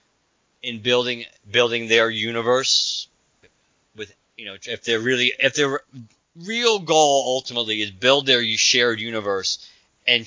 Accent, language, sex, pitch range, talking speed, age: American, English, male, 105-120 Hz, 130 wpm, 40-59